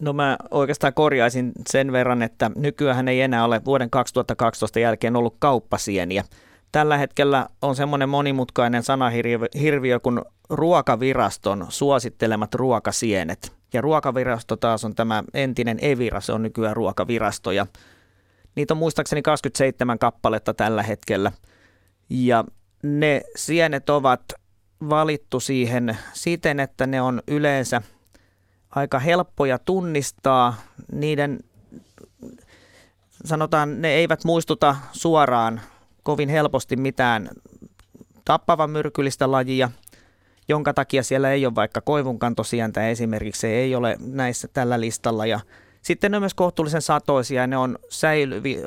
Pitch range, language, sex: 110-145 Hz, Finnish, male